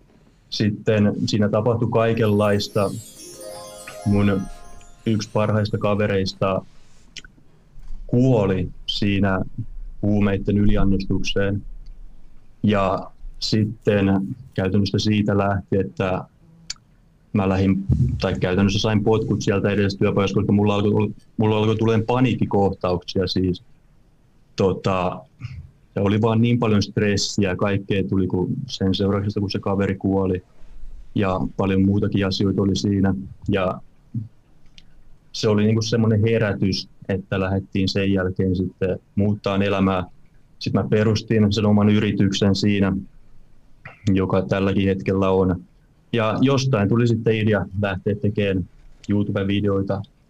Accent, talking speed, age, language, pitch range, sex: native, 105 wpm, 20-39, Finnish, 95-115 Hz, male